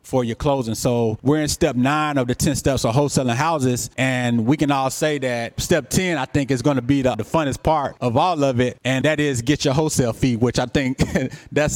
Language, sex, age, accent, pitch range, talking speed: English, male, 20-39, American, 125-150 Hz, 245 wpm